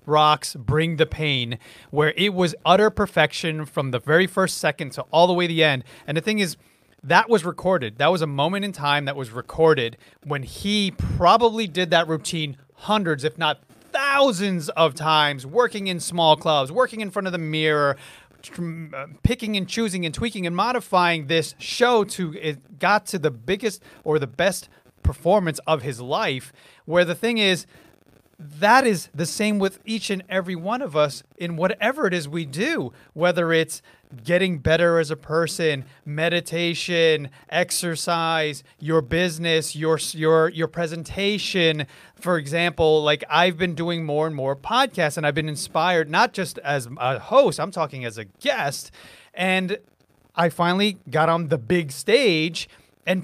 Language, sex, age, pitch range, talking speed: English, male, 30-49, 150-185 Hz, 170 wpm